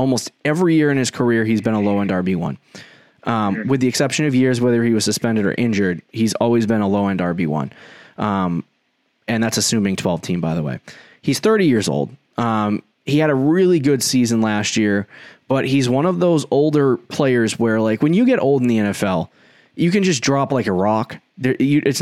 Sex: male